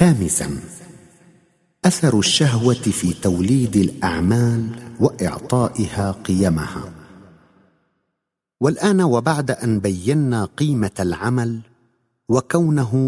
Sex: male